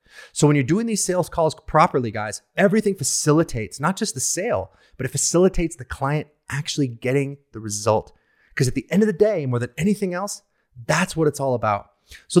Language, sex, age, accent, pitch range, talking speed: English, male, 30-49, American, 125-175 Hz, 200 wpm